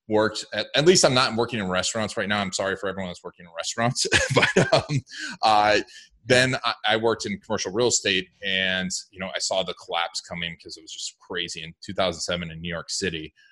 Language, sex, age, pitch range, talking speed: English, male, 20-39, 90-120 Hz, 215 wpm